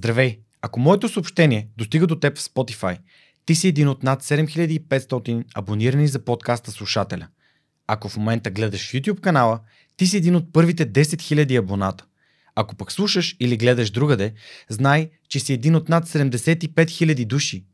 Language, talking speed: Bulgarian, 160 wpm